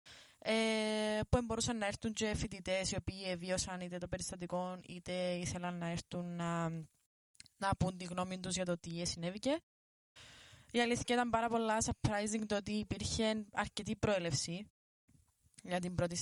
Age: 20-39